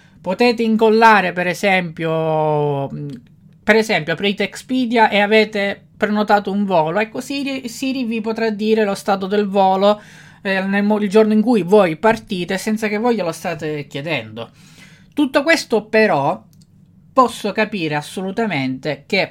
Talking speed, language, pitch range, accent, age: 135 wpm, Italian, 160-230 Hz, native, 20-39